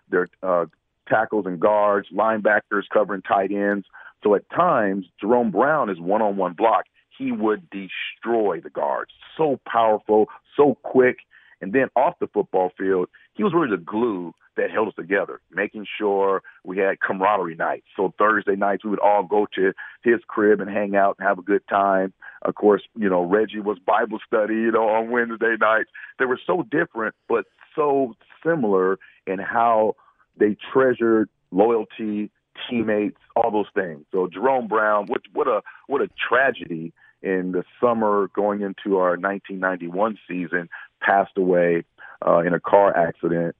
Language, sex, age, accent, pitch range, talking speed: English, male, 50-69, American, 95-115 Hz, 160 wpm